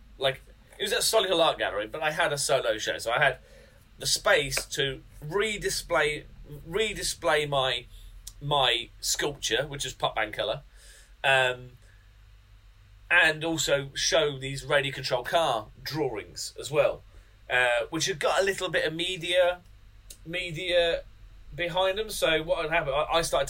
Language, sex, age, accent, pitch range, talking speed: English, male, 30-49, British, 115-165 Hz, 145 wpm